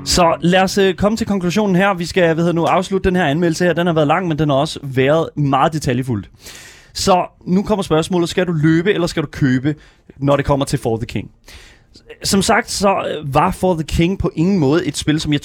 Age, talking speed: 30-49, 230 wpm